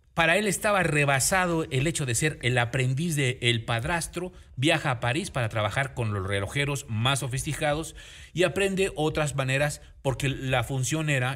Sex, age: male, 40-59